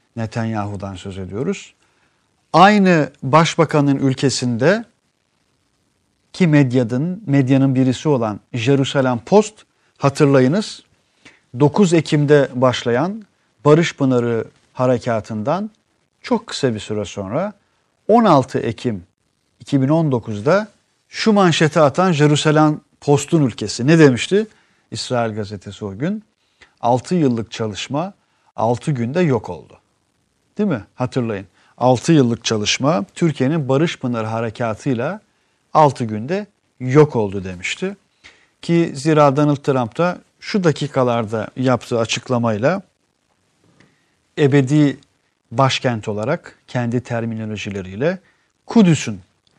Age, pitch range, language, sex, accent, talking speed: 50-69, 115-160 Hz, Turkish, male, native, 95 wpm